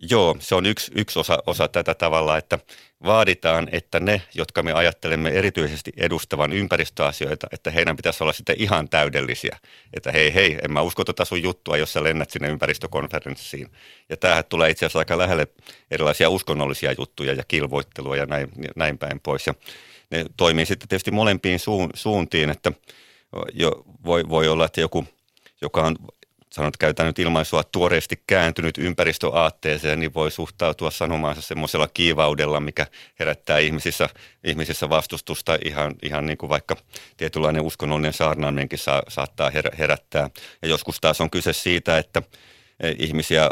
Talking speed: 155 wpm